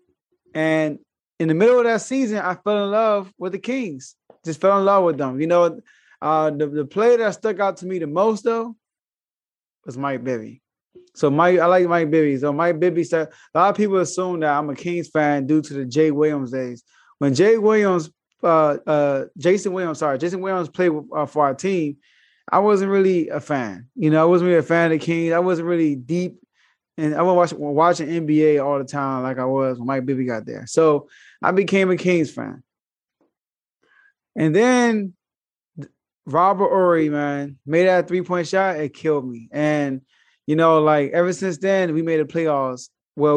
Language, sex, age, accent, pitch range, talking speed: English, male, 20-39, American, 145-190 Hz, 200 wpm